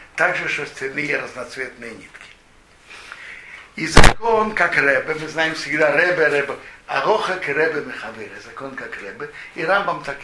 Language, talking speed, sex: Russian, 130 wpm, male